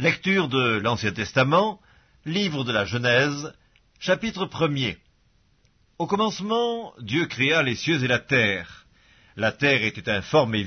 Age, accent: 50-69, French